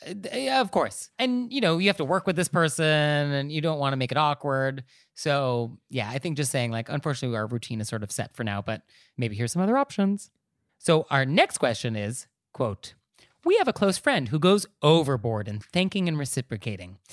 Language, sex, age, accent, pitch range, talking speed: English, male, 30-49, American, 125-190 Hz, 210 wpm